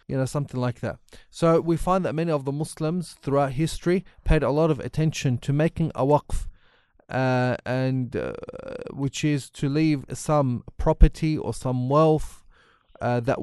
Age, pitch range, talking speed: 30-49, 125-155 Hz, 165 wpm